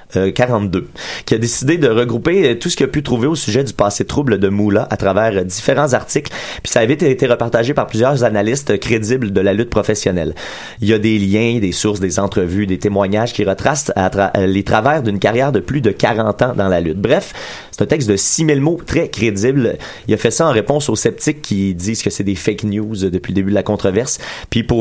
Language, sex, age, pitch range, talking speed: French, male, 30-49, 95-125 Hz, 230 wpm